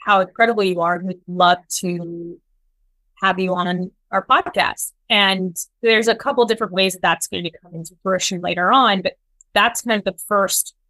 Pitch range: 180-215 Hz